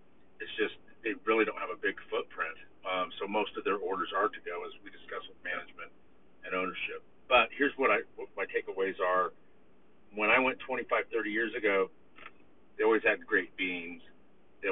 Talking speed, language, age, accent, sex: 180 wpm, English, 50-69, American, male